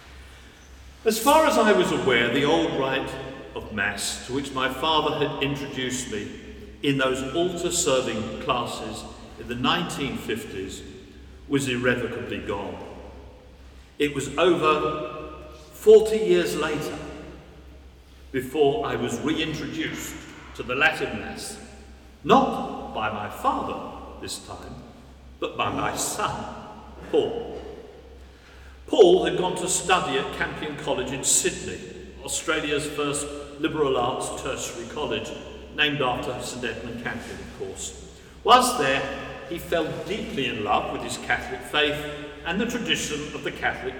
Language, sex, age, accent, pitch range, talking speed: English, male, 50-69, British, 120-175 Hz, 125 wpm